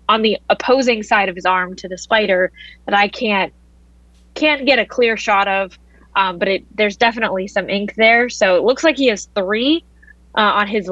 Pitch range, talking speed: 185-240 Hz, 205 wpm